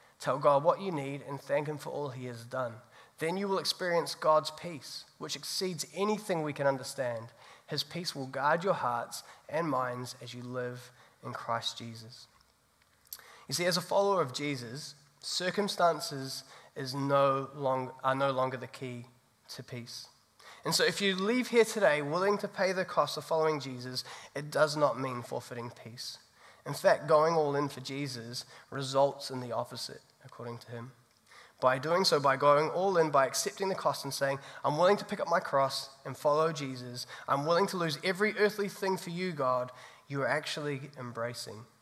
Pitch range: 125-160 Hz